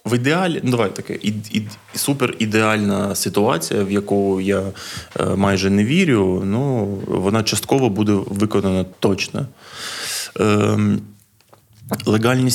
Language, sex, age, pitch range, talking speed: Ukrainian, male, 20-39, 100-115 Hz, 105 wpm